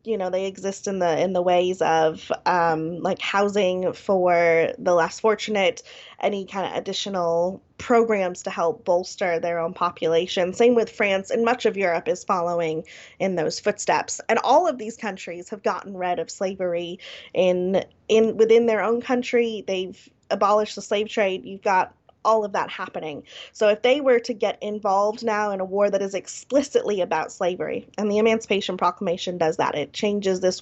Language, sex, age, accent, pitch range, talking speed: English, female, 20-39, American, 180-220 Hz, 180 wpm